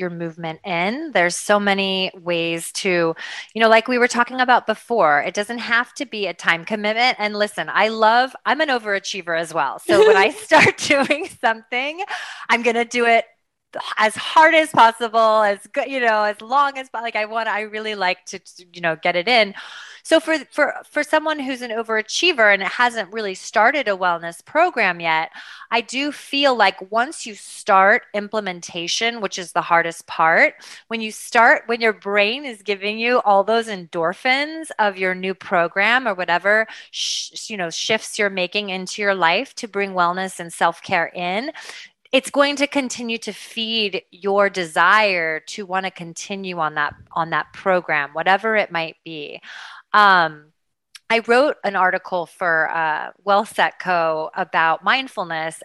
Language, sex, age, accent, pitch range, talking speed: English, female, 30-49, American, 180-235 Hz, 175 wpm